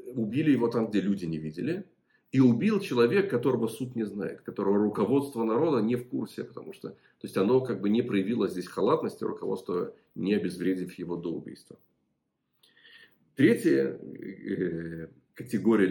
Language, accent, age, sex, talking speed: Russian, native, 40-59, male, 145 wpm